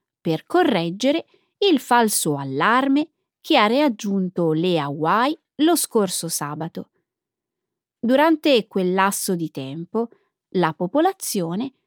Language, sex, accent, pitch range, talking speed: Italian, female, native, 175-275 Hz, 100 wpm